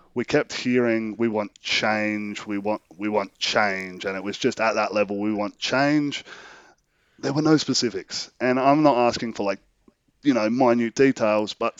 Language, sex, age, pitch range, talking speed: English, male, 30-49, 100-120 Hz, 185 wpm